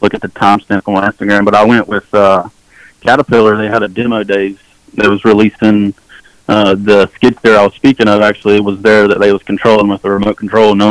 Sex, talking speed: male, 235 wpm